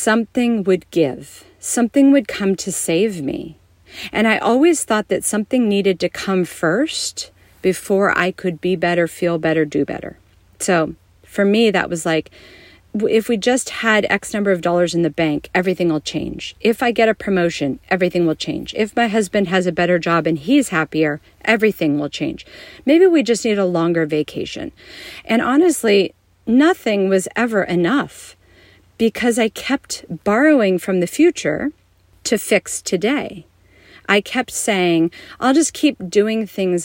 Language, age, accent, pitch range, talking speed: English, 40-59, American, 170-230 Hz, 165 wpm